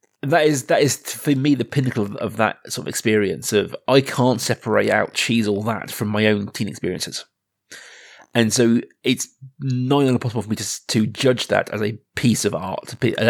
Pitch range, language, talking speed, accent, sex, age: 110-130 Hz, English, 195 wpm, British, male, 30-49